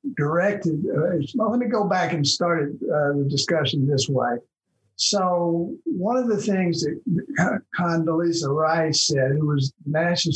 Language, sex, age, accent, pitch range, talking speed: English, male, 60-79, American, 135-170 Hz, 140 wpm